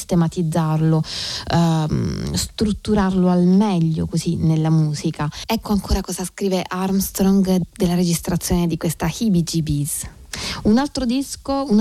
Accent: native